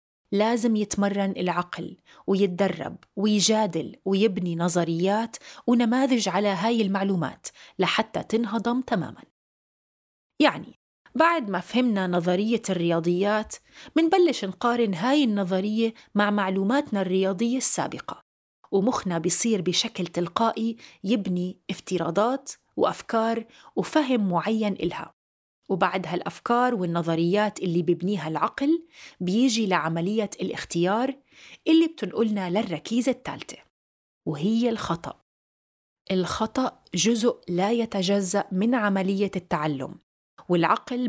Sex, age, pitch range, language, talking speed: female, 30-49, 180-235 Hz, Arabic, 90 wpm